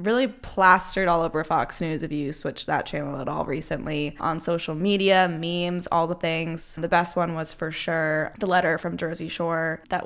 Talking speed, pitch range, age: 195 wpm, 160-200 Hz, 10-29